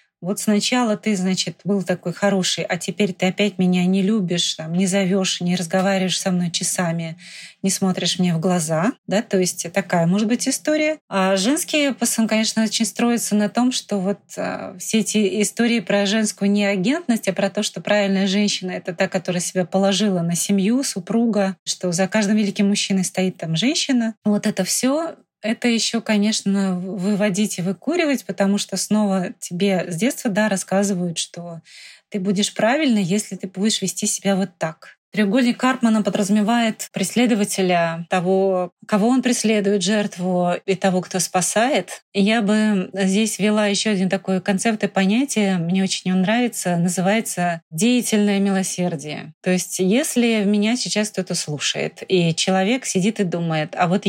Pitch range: 185-215 Hz